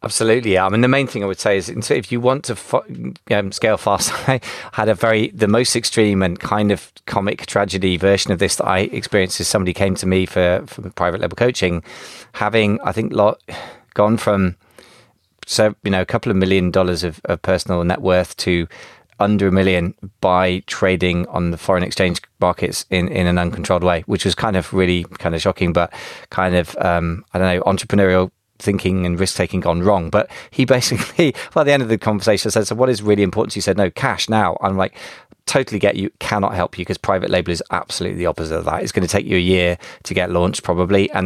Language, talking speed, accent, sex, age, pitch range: English, 225 wpm, British, male, 20-39, 90-105 Hz